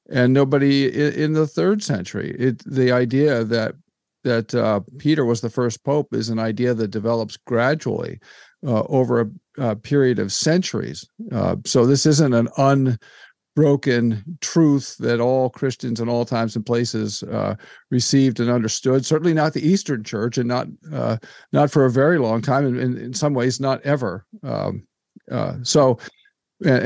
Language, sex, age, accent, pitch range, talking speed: English, male, 50-69, American, 120-150 Hz, 165 wpm